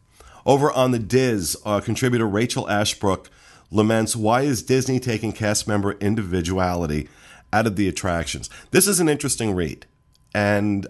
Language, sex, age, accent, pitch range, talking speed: English, male, 40-59, American, 90-115 Hz, 145 wpm